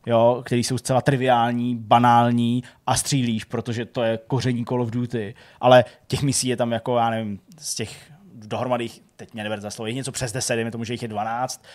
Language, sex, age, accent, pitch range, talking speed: Czech, male, 20-39, native, 115-135 Hz, 200 wpm